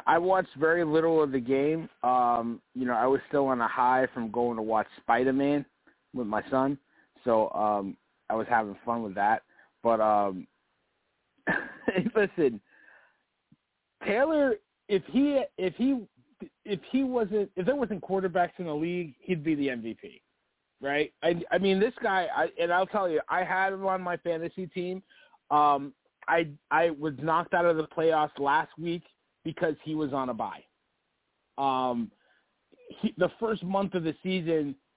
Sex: male